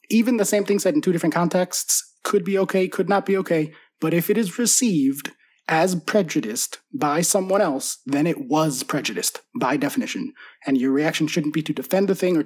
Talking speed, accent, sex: 200 wpm, American, male